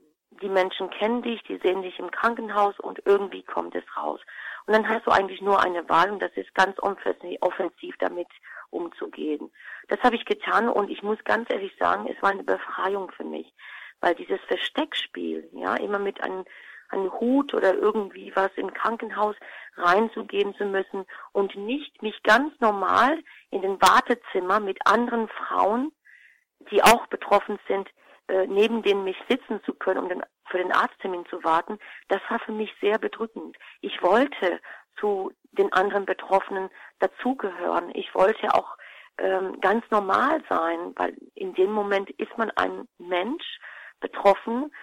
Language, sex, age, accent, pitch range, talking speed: German, female, 50-69, German, 190-240 Hz, 160 wpm